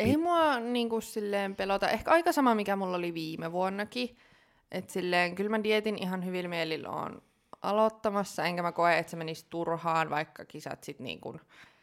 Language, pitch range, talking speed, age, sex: Finnish, 160-200 Hz, 170 wpm, 20-39, female